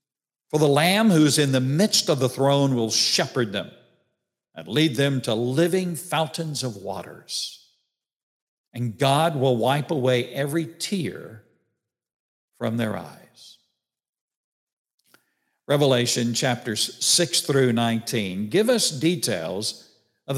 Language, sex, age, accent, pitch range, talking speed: English, male, 60-79, American, 120-155 Hz, 120 wpm